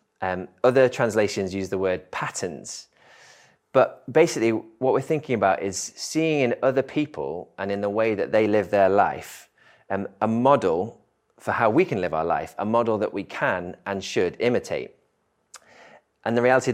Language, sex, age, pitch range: English, male, 30-49, 105-130 Hz